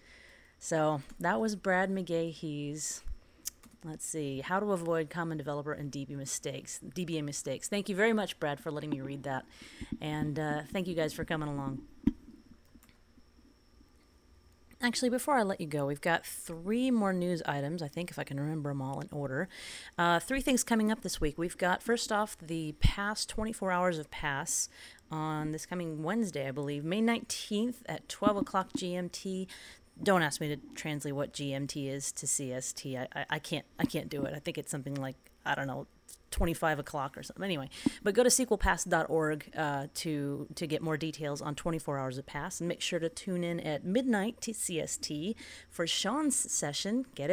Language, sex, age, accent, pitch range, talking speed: English, female, 30-49, American, 150-205 Hz, 185 wpm